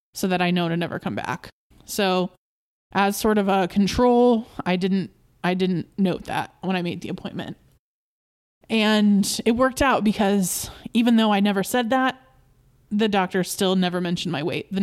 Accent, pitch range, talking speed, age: American, 175-200 Hz, 180 wpm, 20-39